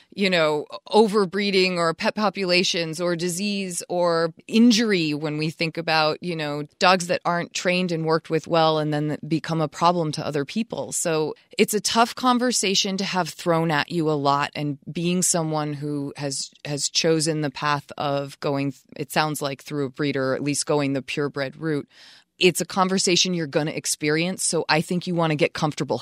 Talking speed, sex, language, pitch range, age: 190 wpm, female, English, 155-195 Hz, 20-39